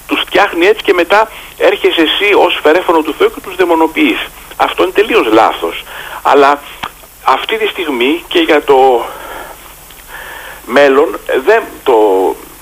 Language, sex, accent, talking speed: Greek, male, native, 130 wpm